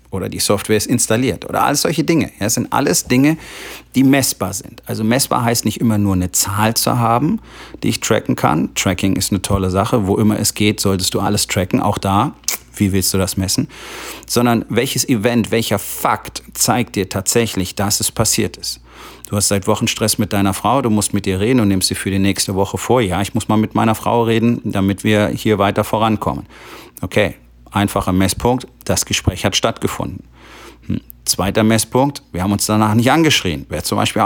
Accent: German